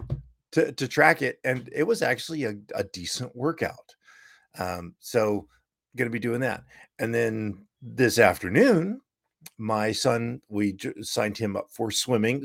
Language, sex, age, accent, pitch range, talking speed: English, male, 50-69, American, 105-140 Hz, 145 wpm